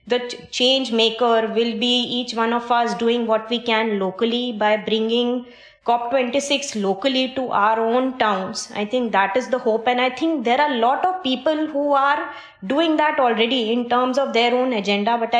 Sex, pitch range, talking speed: female, 215-255 Hz, 190 wpm